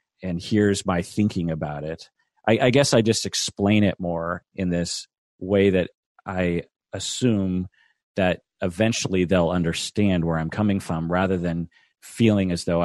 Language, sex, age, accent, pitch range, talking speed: English, male, 40-59, American, 85-100 Hz, 155 wpm